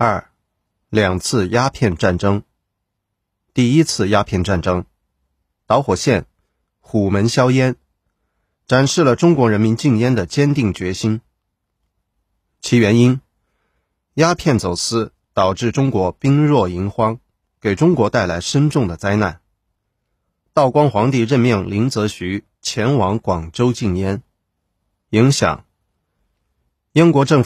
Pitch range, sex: 95-125 Hz, male